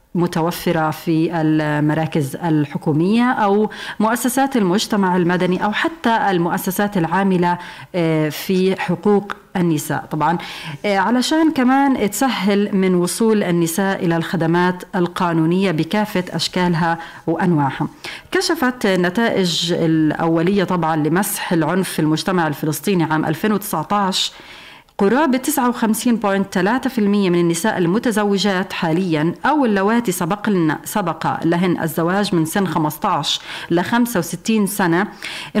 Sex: female